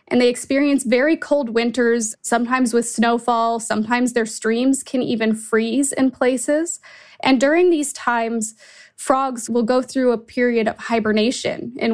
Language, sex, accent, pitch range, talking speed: English, female, American, 220-260 Hz, 150 wpm